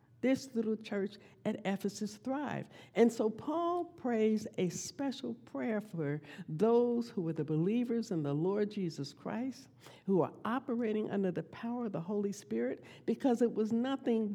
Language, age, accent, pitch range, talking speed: English, 60-79, American, 190-245 Hz, 160 wpm